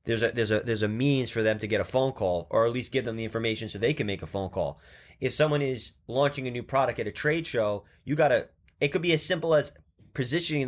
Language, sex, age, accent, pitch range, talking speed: English, male, 20-39, American, 115-150 Hz, 275 wpm